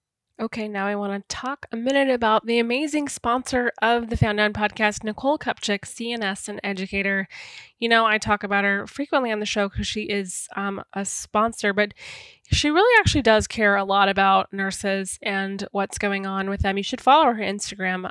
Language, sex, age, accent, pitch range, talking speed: English, female, 20-39, American, 195-235 Hz, 195 wpm